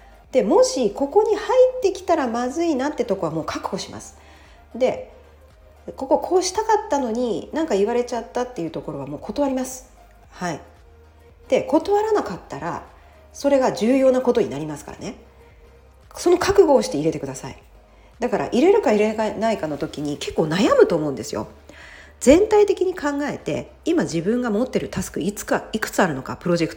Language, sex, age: Japanese, female, 40-59